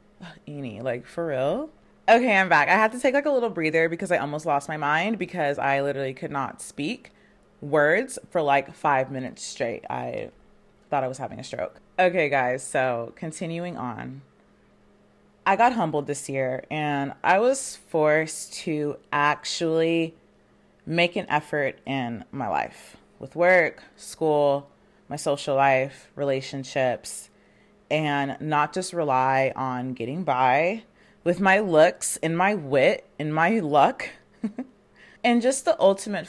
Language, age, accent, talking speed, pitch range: English, 30-49, American, 150 wpm, 140-180 Hz